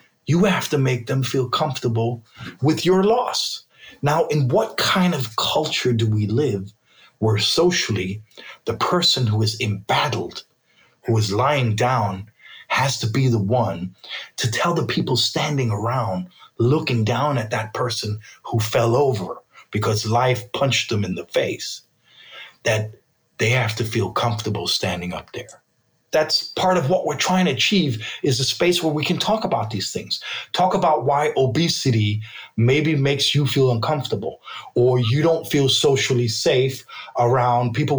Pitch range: 115-155 Hz